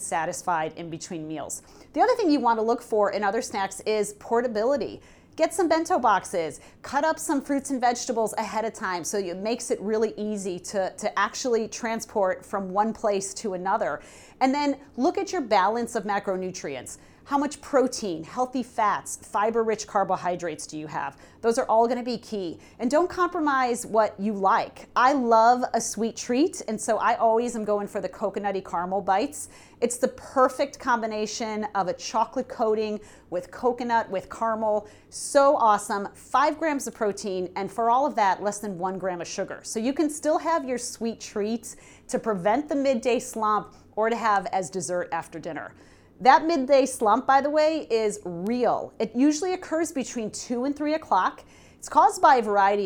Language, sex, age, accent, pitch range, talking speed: English, female, 40-59, American, 200-260 Hz, 185 wpm